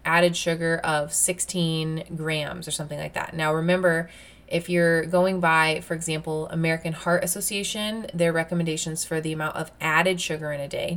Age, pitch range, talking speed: 20-39, 160-185 Hz, 170 wpm